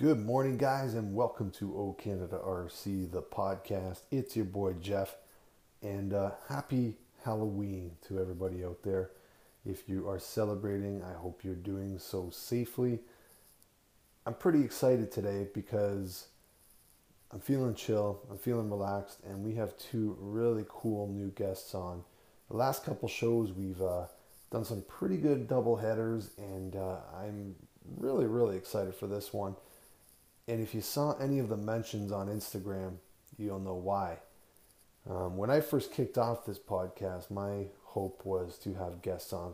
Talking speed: 155 wpm